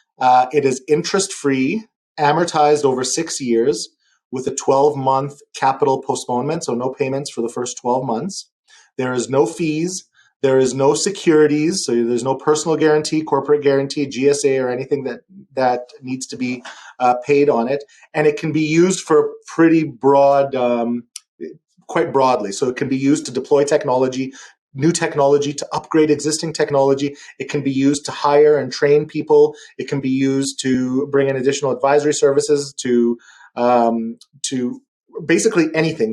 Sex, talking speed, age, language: male, 160 wpm, 30-49, English